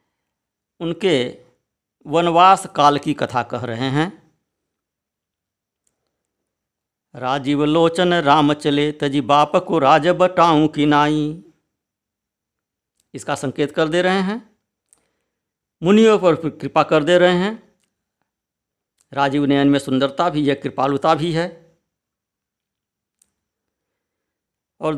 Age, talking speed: 50-69, 100 wpm